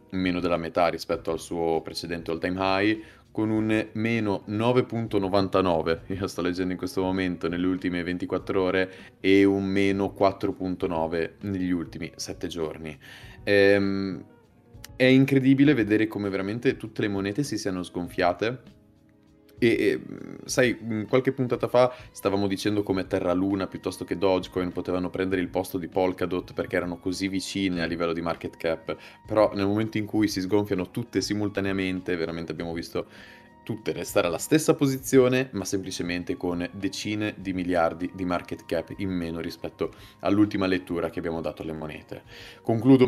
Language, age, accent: Italian, 20-39, native